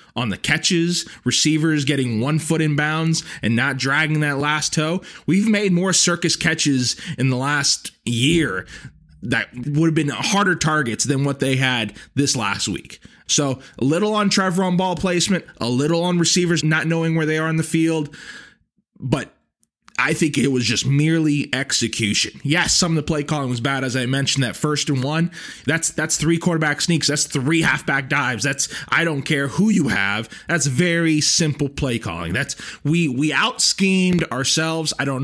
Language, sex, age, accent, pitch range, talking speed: English, male, 20-39, American, 135-165 Hz, 185 wpm